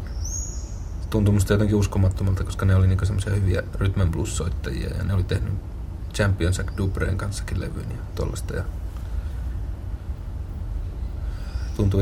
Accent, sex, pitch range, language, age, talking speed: native, male, 85-95 Hz, Finnish, 30-49, 105 wpm